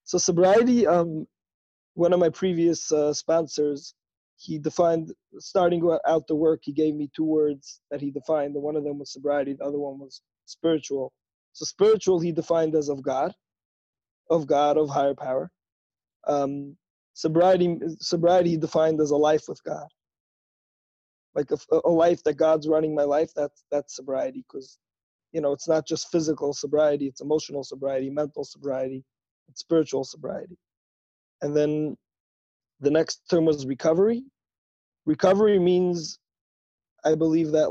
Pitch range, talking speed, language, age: 140-165 Hz, 150 wpm, English, 20-39